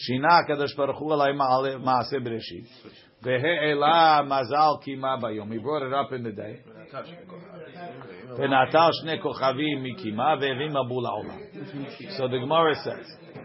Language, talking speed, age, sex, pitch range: English, 50 wpm, 50-69, male, 125-150 Hz